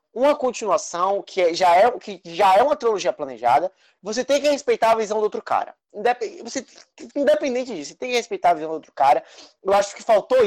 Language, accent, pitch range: Portuguese, Brazilian, 185-280 Hz